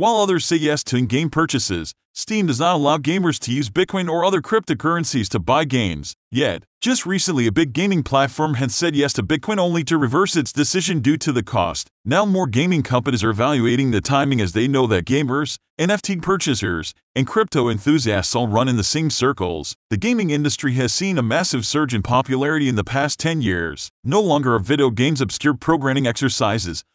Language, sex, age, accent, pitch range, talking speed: English, male, 40-59, American, 120-165 Hz, 200 wpm